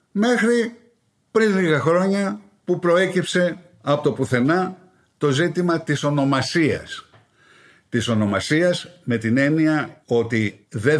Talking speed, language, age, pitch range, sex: 110 wpm, Greek, 50-69, 110-160 Hz, male